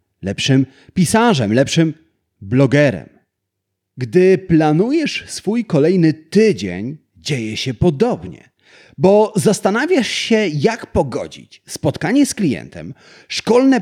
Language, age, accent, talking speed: Polish, 30-49, native, 90 wpm